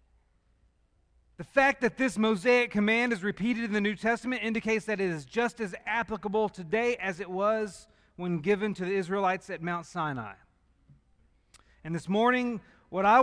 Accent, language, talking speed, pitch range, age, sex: American, English, 165 wpm, 155-220 Hz, 40-59, male